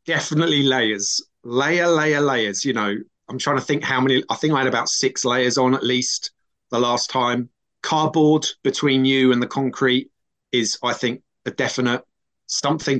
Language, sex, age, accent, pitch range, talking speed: English, male, 30-49, British, 120-145 Hz, 175 wpm